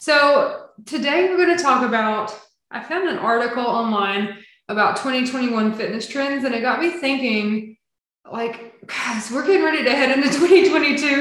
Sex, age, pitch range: female, 20-39, 210-265 Hz